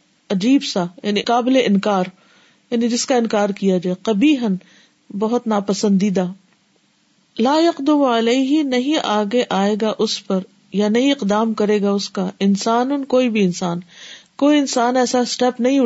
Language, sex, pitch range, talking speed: Urdu, female, 200-255 Hz, 150 wpm